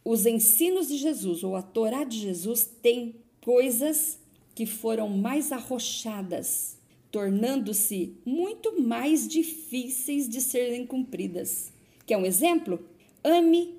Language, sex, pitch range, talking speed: Portuguese, female, 205-290 Hz, 115 wpm